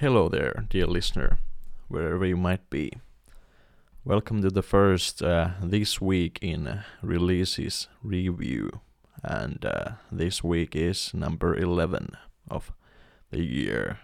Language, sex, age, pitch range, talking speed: English, male, 20-39, 85-95 Hz, 120 wpm